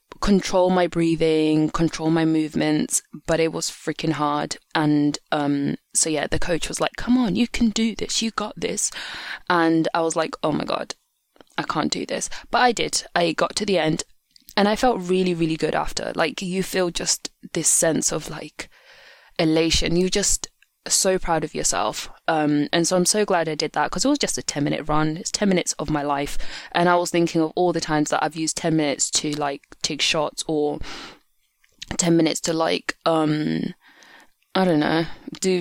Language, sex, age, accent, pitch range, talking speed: English, female, 20-39, British, 155-180 Hz, 200 wpm